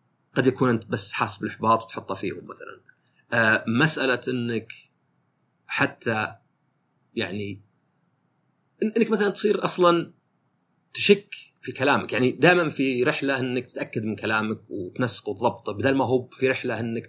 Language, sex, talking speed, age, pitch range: Arabic, male, 135 wpm, 30-49, 120-185 Hz